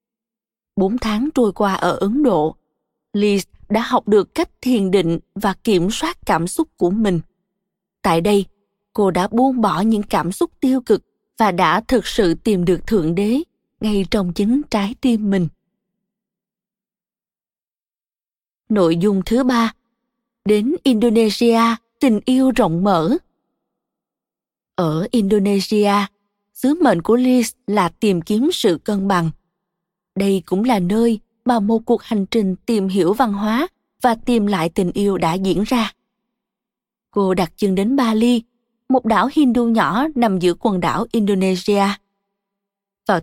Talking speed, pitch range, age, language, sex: 145 wpm, 195-235 Hz, 20-39, Vietnamese, female